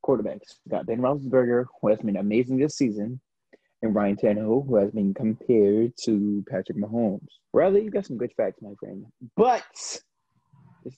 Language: English